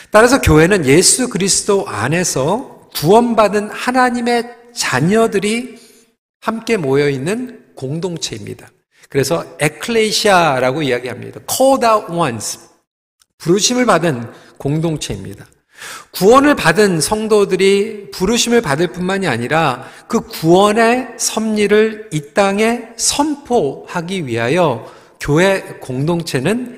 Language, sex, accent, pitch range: Korean, male, native, 155-225 Hz